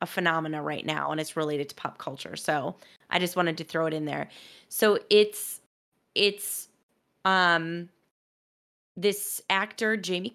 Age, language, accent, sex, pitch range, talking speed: 20-39, English, American, female, 160-185 Hz, 150 wpm